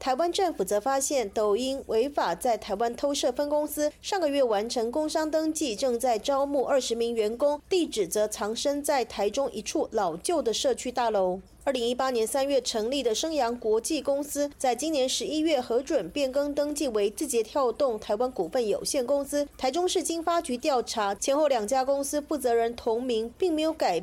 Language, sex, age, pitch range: Chinese, female, 30-49, 240-315 Hz